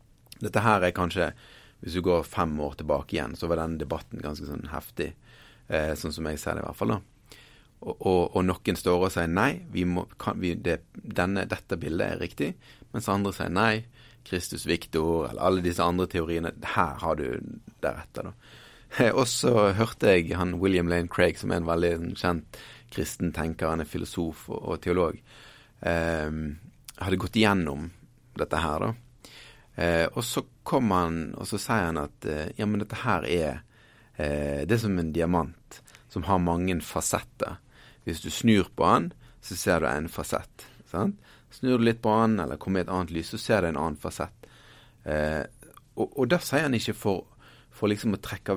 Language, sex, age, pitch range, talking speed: English, male, 30-49, 80-105 Hz, 185 wpm